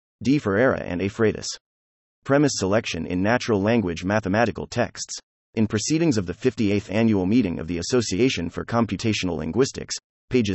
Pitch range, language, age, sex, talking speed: 90-120 Hz, English, 30-49, male, 140 wpm